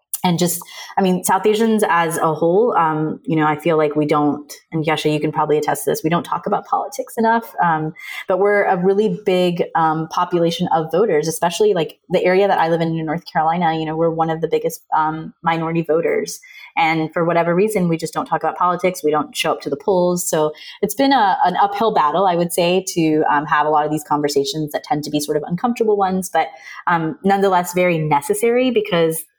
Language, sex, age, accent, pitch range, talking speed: English, female, 20-39, American, 155-190 Hz, 225 wpm